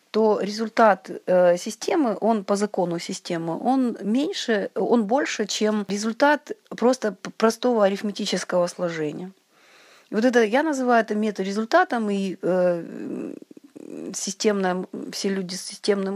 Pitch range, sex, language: 180-230 Hz, female, Russian